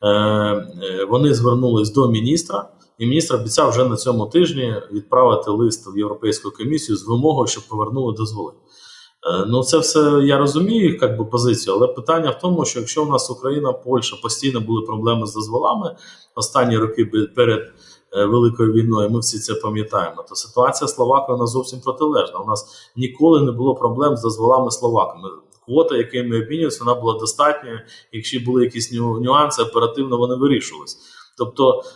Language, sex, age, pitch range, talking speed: Ukrainian, male, 20-39, 115-150 Hz, 155 wpm